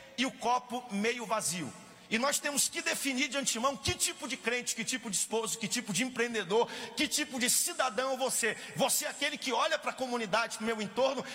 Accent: Brazilian